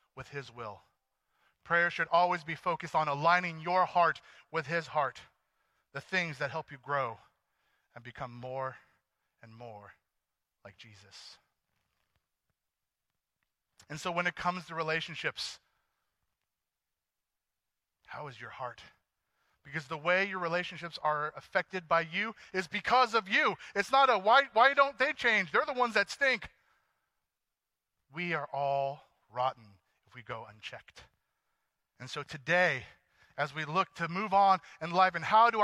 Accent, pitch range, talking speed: American, 140-195 Hz, 145 wpm